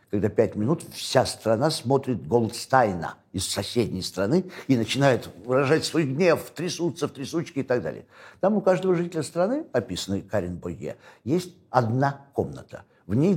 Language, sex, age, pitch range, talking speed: Russian, male, 60-79, 115-165 Hz, 155 wpm